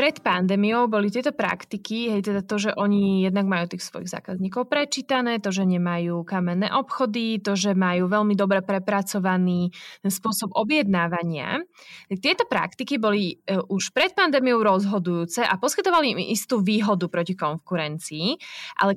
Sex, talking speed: female, 135 wpm